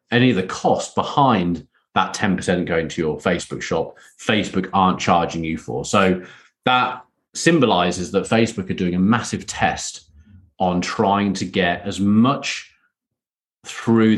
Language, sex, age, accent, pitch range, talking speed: English, male, 30-49, British, 90-110 Hz, 145 wpm